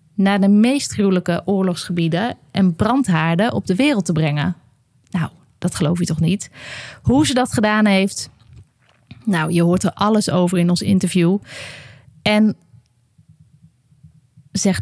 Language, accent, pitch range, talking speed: Dutch, Dutch, 160-205 Hz, 140 wpm